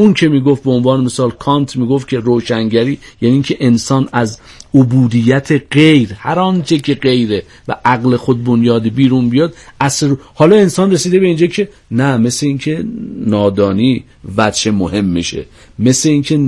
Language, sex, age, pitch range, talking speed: Persian, male, 50-69, 115-145 Hz, 150 wpm